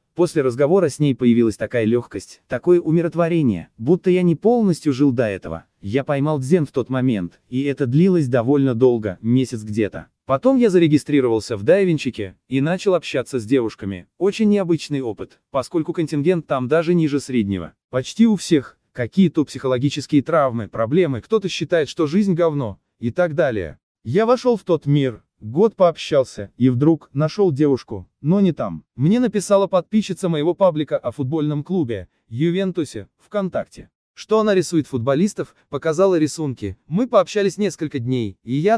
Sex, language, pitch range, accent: male, Russian, 125-185 Hz, native